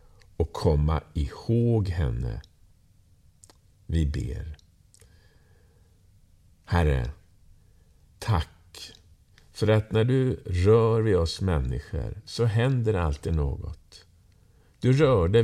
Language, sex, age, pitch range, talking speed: Swedish, male, 50-69, 85-110 Hz, 85 wpm